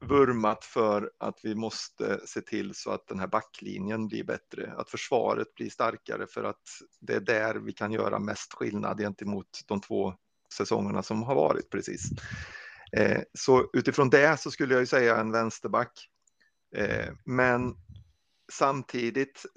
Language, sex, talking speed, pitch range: Swedish, male, 145 wpm, 105-135 Hz